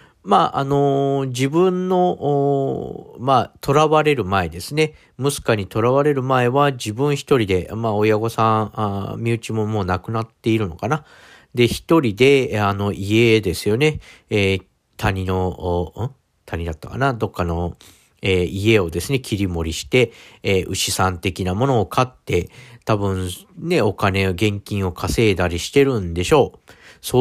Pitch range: 95-135 Hz